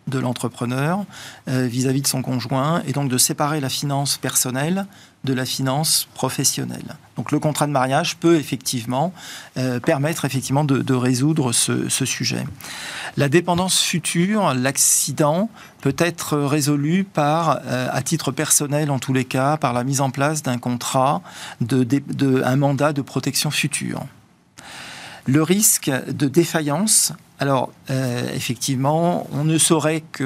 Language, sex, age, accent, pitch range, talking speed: French, male, 40-59, French, 130-155 Hz, 150 wpm